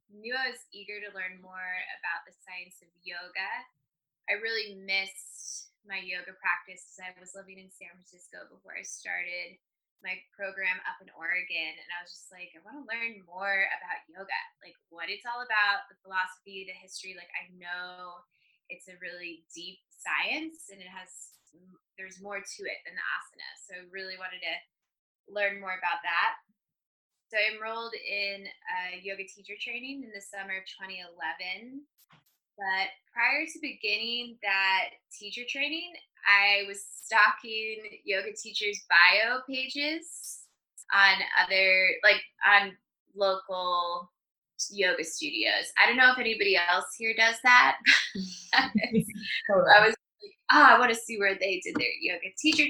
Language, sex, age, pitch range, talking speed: English, female, 10-29, 185-230 Hz, 155 wpm